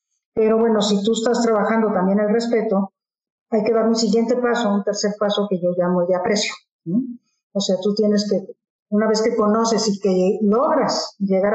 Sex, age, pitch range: female, 50-69, 200-235 Hz